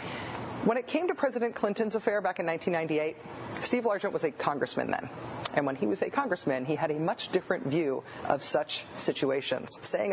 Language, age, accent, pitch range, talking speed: English, 40-59, American, 170-230 Hz, 190 wpm